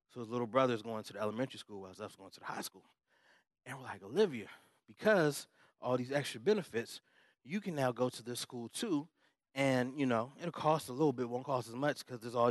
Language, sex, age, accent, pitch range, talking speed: English, male, 20-39, American, 125-200 Hz, 230 wpm